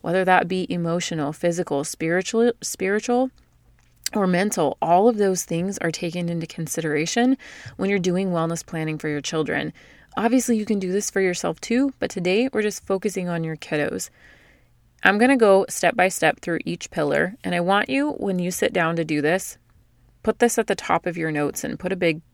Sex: female